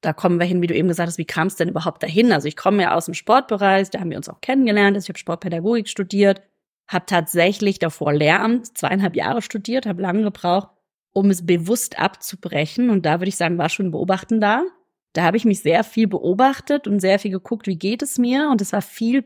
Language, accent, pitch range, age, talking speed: German, German, 170-210 Hz, 30-49, 230 wpm